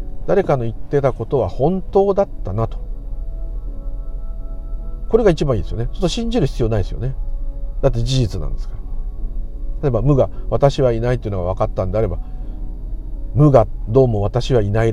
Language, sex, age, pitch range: Japanese, male, 50-69, 90-135 Hz